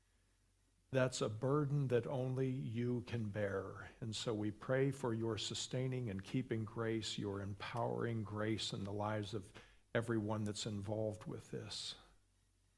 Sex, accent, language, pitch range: male, American, English, 100-120 Hz